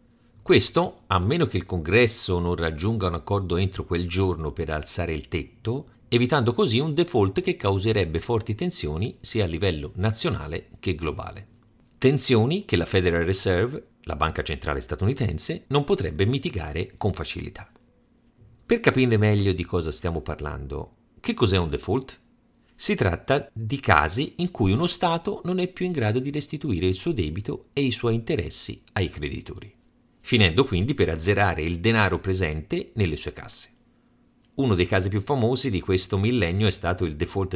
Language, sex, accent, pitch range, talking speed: Italian, male, native, 90-125 Hz, 165 wpm